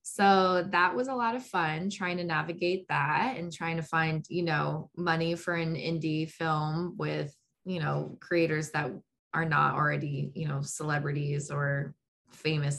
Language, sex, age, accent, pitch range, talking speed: English, female, 20-39, American, 155-180 Hz, 165 wpm